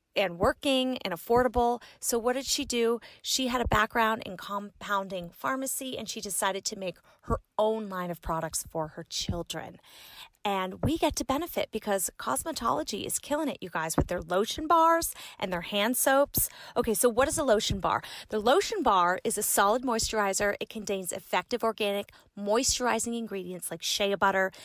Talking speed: 175 wpm